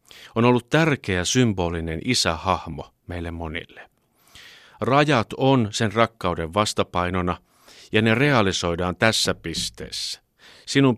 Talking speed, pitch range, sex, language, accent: 100 wpm, 90-115 Hz, male, Finnish, native